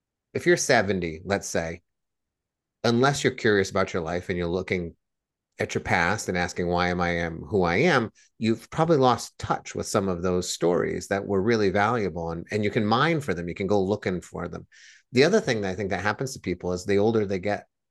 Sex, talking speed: male, 225 wpm